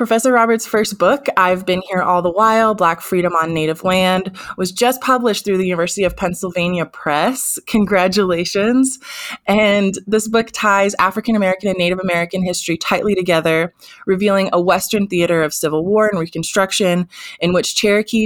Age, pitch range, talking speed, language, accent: 20-39, 165-200 Hz, 160 wpm, English, American